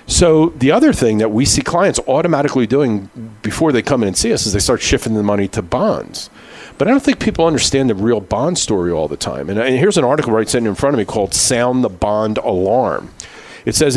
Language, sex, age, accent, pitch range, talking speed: English, male, 50-69, American, 105-140 Hz, 235 wpm